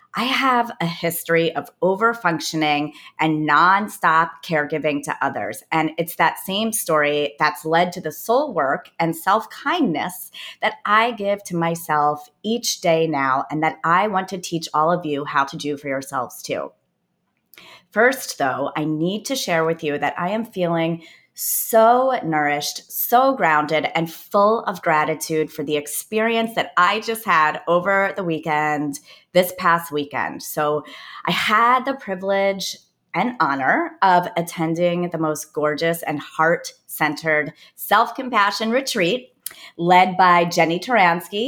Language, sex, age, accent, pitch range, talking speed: English, female, 30-49, American, 155-200 Hz, 145 wpm